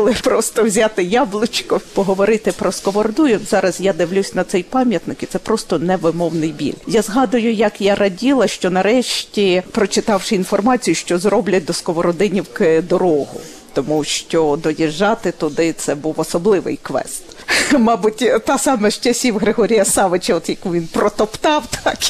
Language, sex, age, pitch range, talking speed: Ukrainian, female, 50-69, 175-240 Hz, 140 wpm